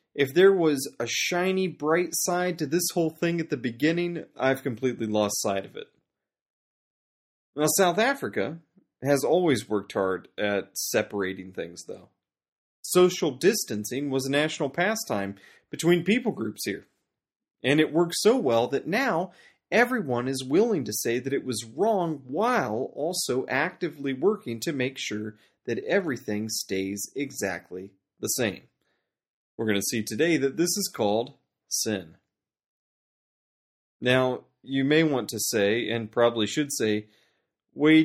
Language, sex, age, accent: English, male, 30-49, American